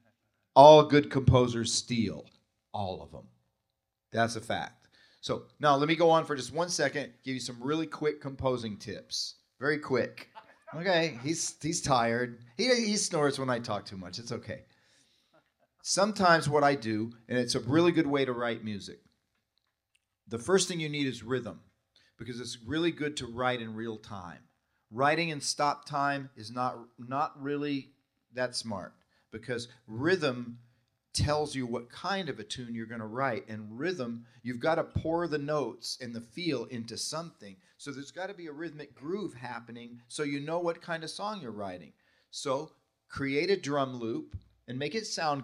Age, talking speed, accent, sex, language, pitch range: 40-59, 180 wpm, American, male, English, 115-150 Hz